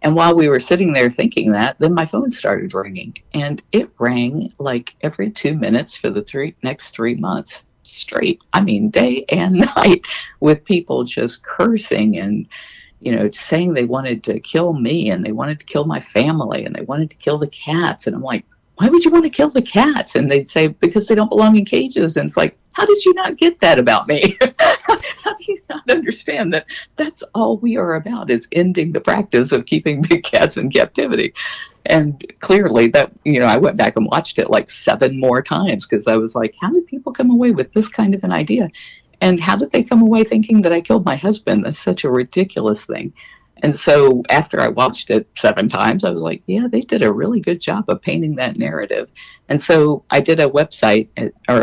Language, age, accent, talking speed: English, 50-69, American, 215 wpm